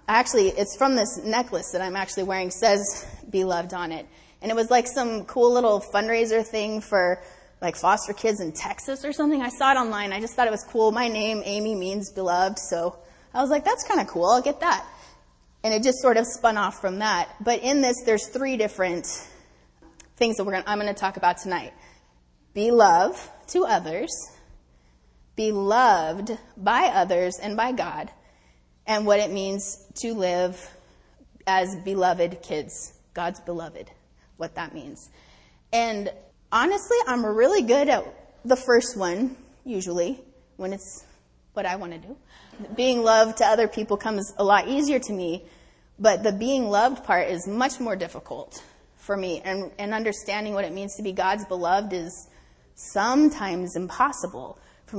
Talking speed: 175 wpm